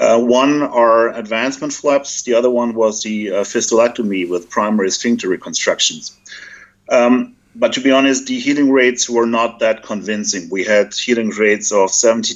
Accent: German